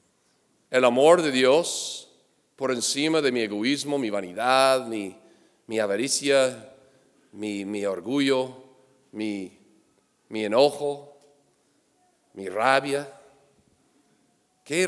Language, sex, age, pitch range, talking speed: English, male, 40-59, 115-135 Hz, 95 wpm